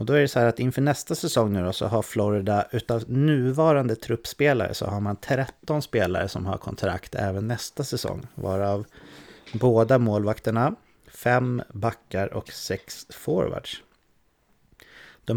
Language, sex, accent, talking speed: English, male, Swedish, 150 wpm